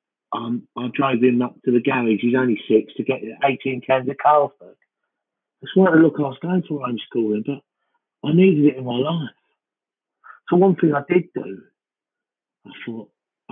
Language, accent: English, British